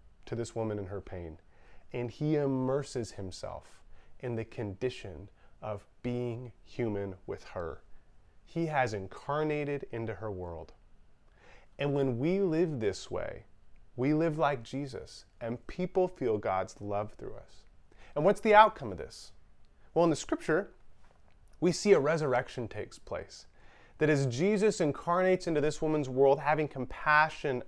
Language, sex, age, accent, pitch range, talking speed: English, male, 30-49, American, 110-170 Hz, 145 wpm